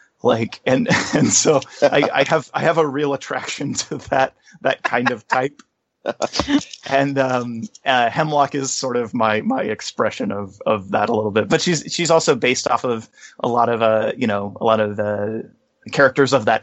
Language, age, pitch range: English, 30-49, 110-145 Hz